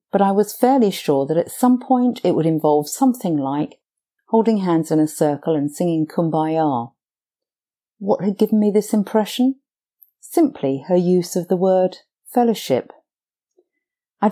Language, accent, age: English, British, 50-69